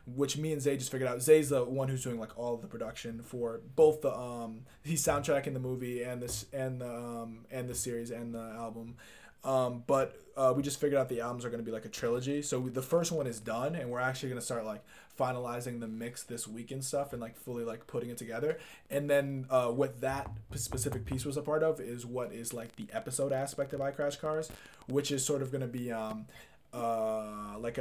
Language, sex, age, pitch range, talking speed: English, male, 20-39, 120-135 Hz, 245 wpm